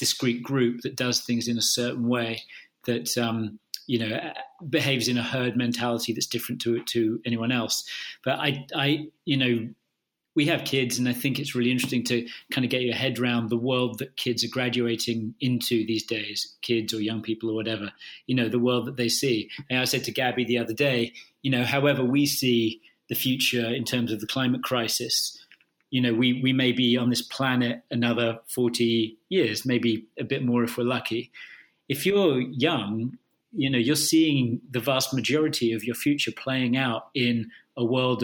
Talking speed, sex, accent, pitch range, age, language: 195 wpm, male, British, 120-130 Hz, 30-49, English